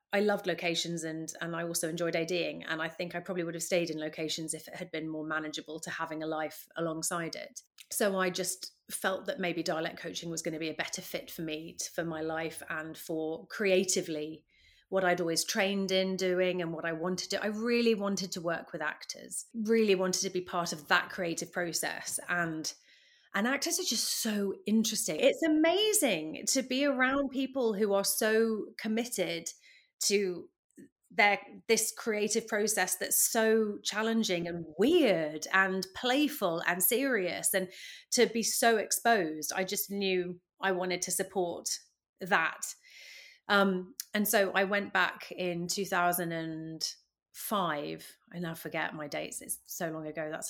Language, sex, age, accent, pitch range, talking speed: English, female, 30-49, British, 170-220 Hz, 170 wpm